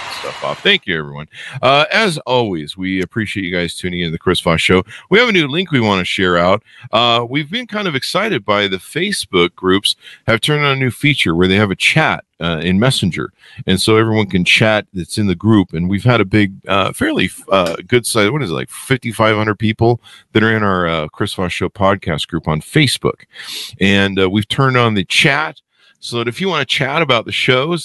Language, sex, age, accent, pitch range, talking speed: English, male, 50-69, American, 90-125 Hz, 235 wpm